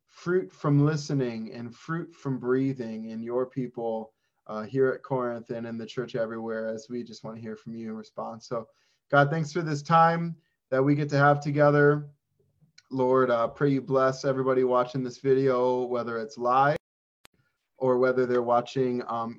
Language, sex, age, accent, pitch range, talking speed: English, male, 20-39, American, 120-145 Hz, 185 wpm